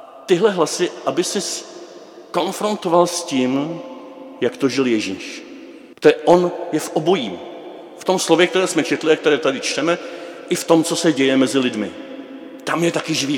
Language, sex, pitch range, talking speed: Czech, male, 145-200 Hz, 170 wpm